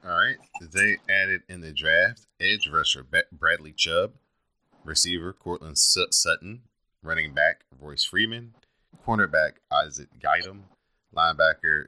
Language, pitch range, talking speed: English, 75-85 Hz, 110 wpm